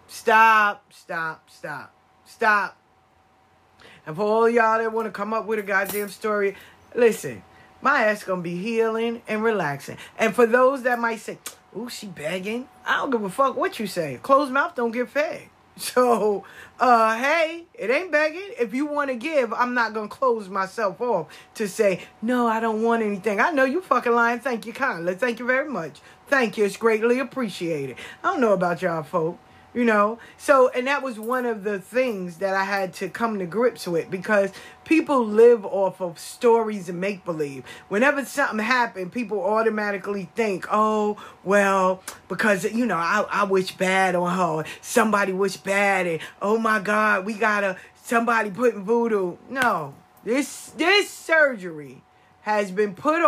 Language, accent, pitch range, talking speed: English, American, 195-245 Hz, 180 wpm